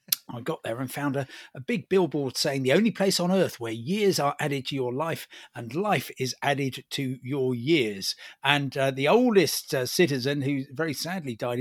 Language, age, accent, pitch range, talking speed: English, 50-69, British, 130-170 Hz, 200 wpm